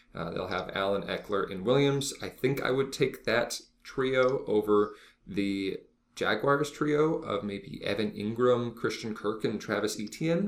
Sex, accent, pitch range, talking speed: male, American, 100-135 Hz, 155 wpm